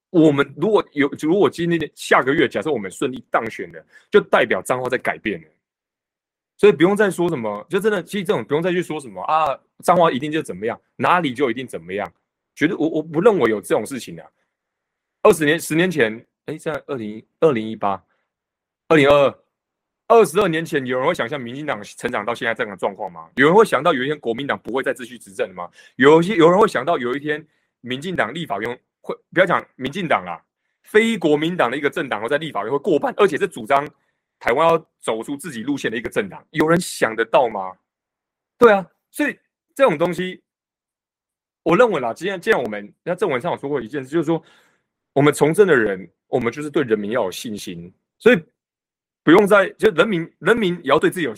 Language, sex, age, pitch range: Chinese, male, 30-49, 135-185 Hz